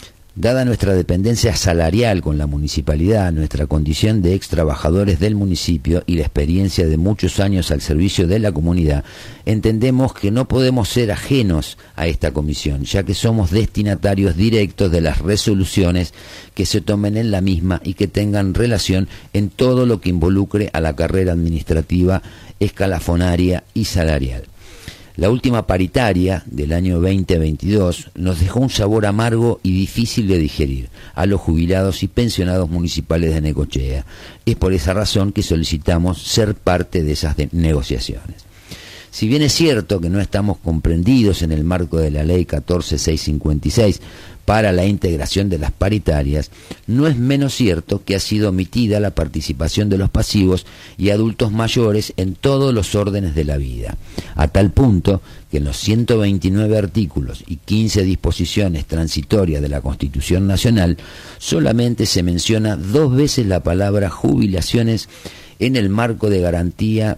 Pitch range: 85-105 Hz